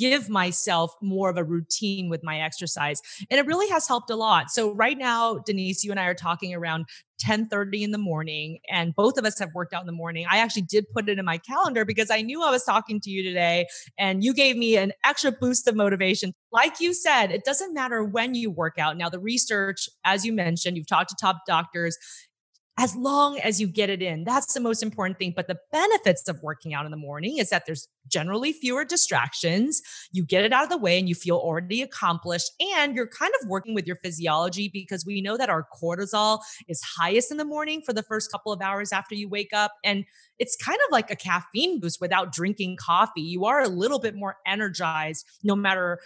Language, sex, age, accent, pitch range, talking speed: English, female, 30-49, American, 175-230 Hz, 230 wpm